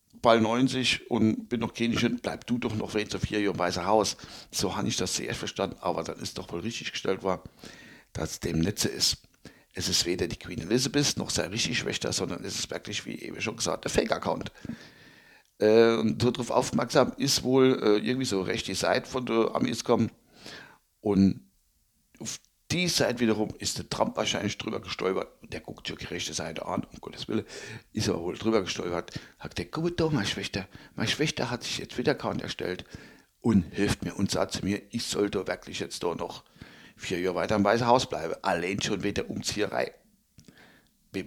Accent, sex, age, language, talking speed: German, male, 60-79, German, 200 wpm